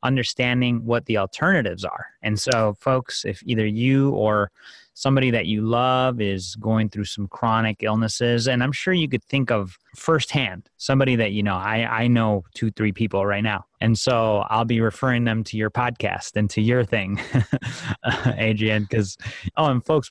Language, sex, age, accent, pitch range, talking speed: English, male, 30-49, American, 105-125 Hz, 180 wpm